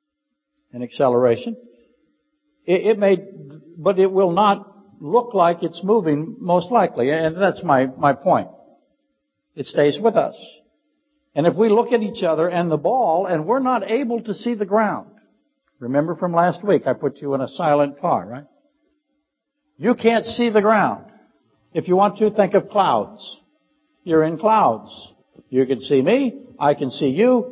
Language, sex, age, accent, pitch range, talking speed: English, male, 60-79, American, 160-245 Hz, 170 wpm